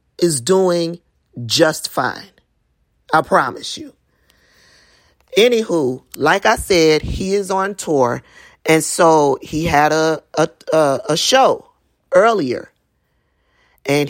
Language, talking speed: English, 100 wpm